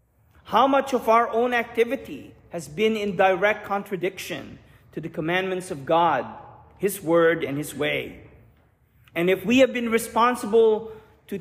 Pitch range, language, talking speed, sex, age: 175-230 Hz, English, 145 wpm, male, 40-59